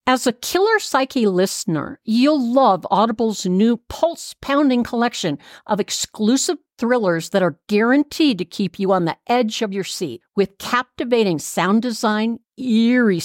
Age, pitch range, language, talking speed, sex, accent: 50-69, 195-265 Hz, English, 140 wpm, female, American